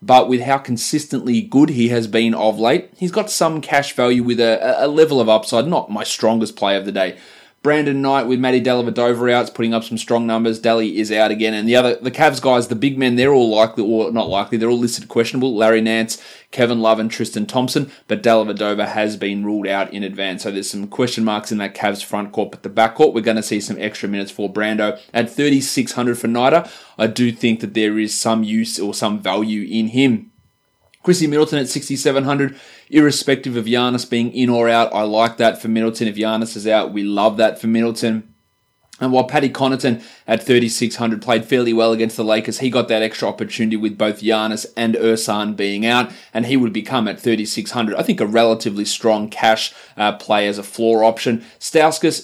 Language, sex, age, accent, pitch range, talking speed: English, male, 20-39, Australian, 110-125 Hz, 210 wpm